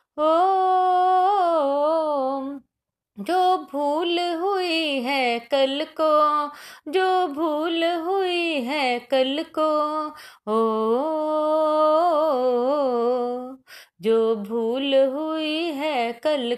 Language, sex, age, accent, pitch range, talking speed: Hindi, female, 20-39, native, 265-320 Hz, 65 wpm